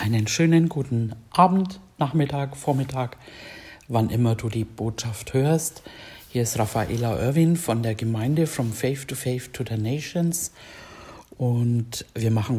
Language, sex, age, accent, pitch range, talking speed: German, female, 60-79, German, 120-150 Hz, 140 wpm